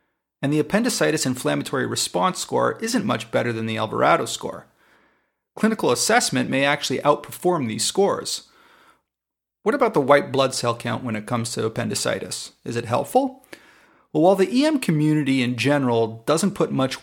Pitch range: 120-165 Hz